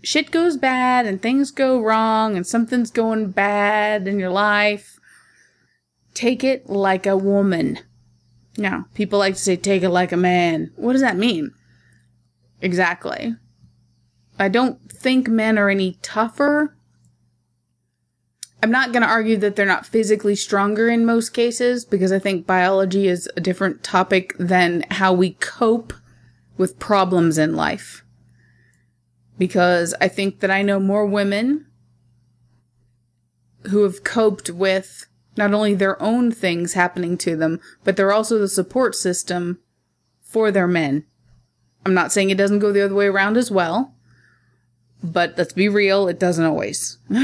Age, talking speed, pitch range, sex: 20-39, 150 wpm, 175-220 Hz, female